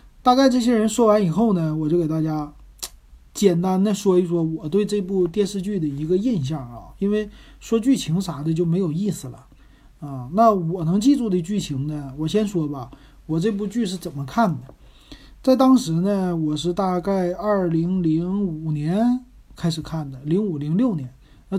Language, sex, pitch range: Chinese, male, 155-205 Hz